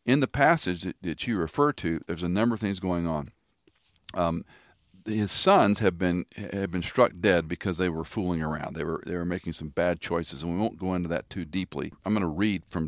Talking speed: 230 wpm